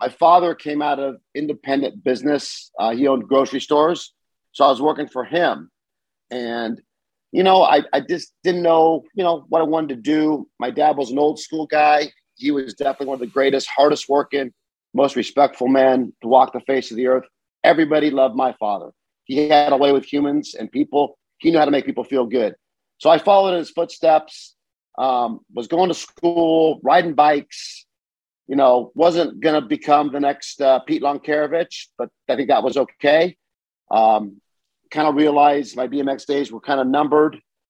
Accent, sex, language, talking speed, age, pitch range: American, male, English, 190 wpm, 40-59, 135-160 Hz